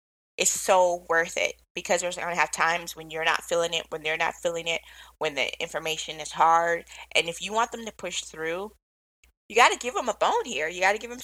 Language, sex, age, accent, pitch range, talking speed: English, female, 20-39, American, 165-210 Hz, 245 wpm